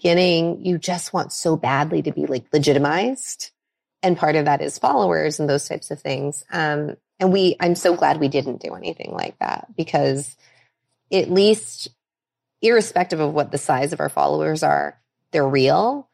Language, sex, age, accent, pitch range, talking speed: English, female, 20-39, American, 140-170 Hz, 175 wpm